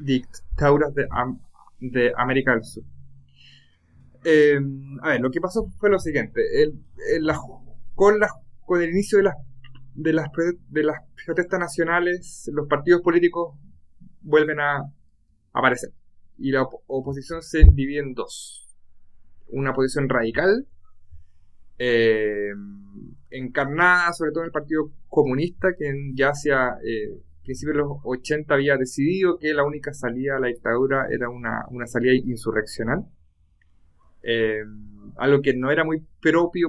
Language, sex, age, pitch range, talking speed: Spanish, male, 20-39, 115-160 Hz, 140 wpm